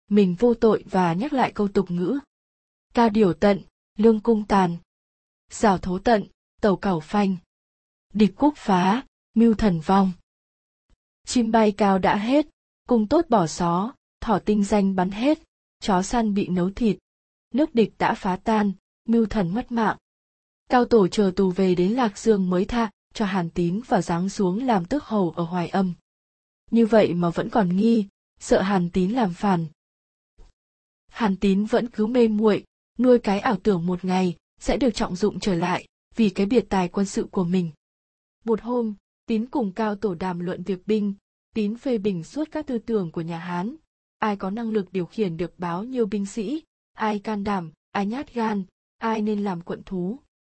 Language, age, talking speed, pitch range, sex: Vietnamese, 20-39, 185 wpm, 185-230 Hz, female